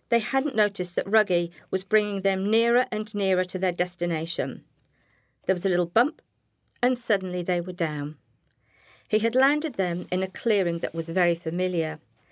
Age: 50-69